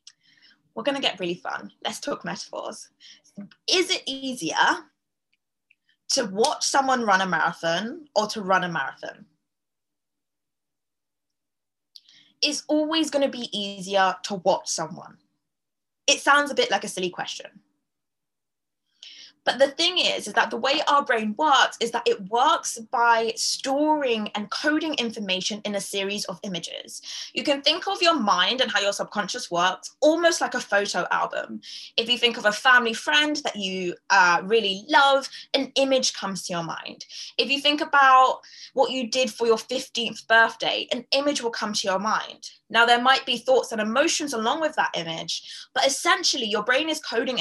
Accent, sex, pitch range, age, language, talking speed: British, female, 205-275 Hz, 20-39, English, 170 wpm